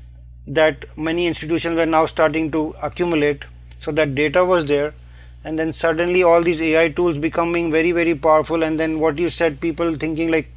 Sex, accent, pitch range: male, Indian, 150-165 Hz